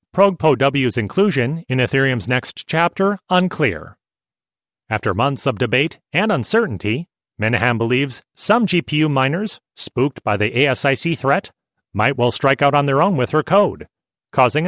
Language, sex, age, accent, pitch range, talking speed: English, male, 40-59, American, 120-165 Hz, 140 wpm